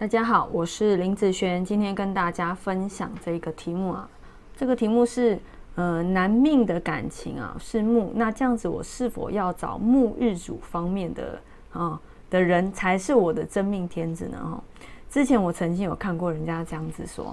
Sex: female